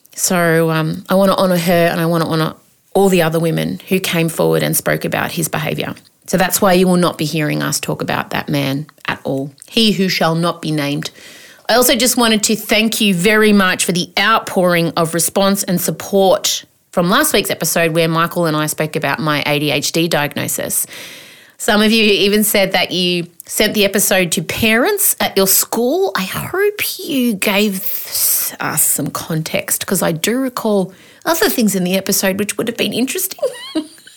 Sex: female